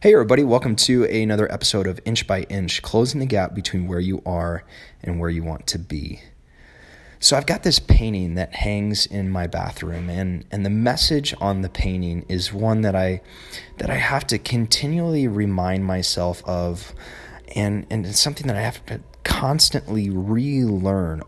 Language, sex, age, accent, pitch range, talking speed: English, male, 20-39, American, 90-120 Hz, 175 wpm